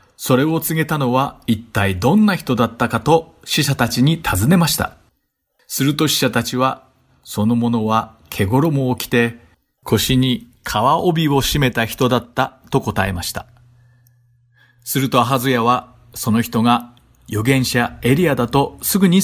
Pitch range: 110-150 Hz